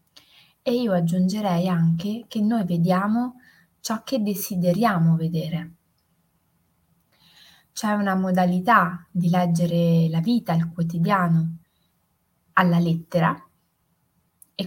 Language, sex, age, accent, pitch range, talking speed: Italian, female, 20-39, native, 170-230 Hz, 95 wpm